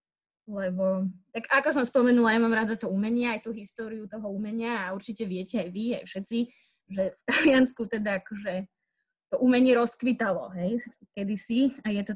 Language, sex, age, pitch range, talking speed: Slovak, female, 20-39, 205-250 Hz, 175 wpm